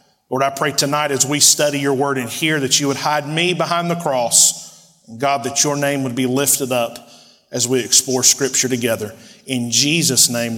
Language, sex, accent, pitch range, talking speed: English, male, American, 140-165 Hz, 200 wpm